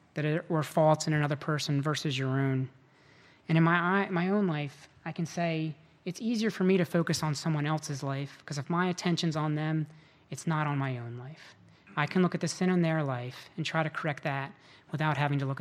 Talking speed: 225 wpm